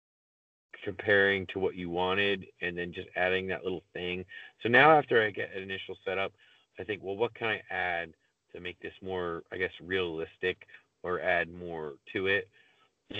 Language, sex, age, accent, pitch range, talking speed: English, male, 30-49, American, 90-110 Hz, 180 wpm